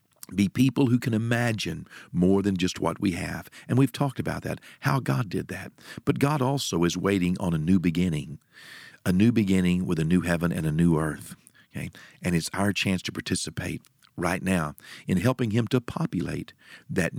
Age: 50-69